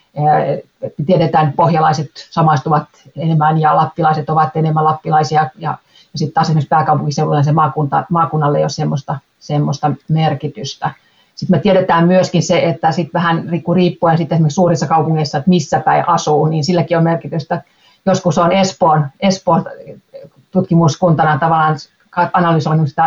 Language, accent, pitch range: Finnish, native, 155-175 Hz